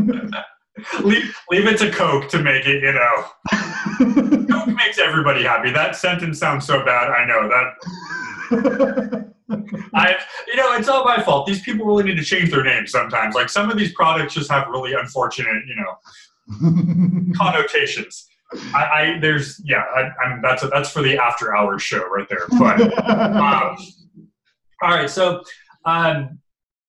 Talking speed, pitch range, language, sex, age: 165 wpm, 135-200 Hz, English, male, 30-49